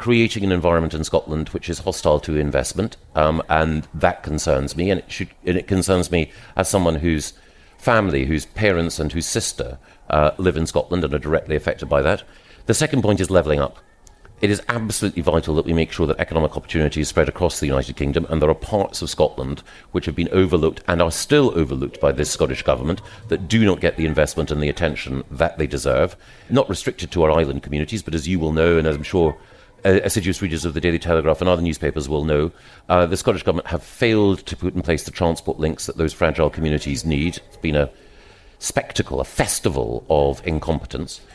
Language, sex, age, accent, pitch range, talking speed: English, male, 40-59, British, 80-95 Hz, 210 wpm